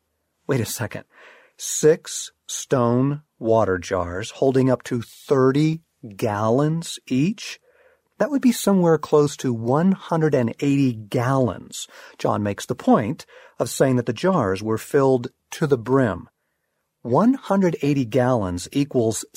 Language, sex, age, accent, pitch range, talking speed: English, male, 40-59, American, 120-185 Hz, 120 wpm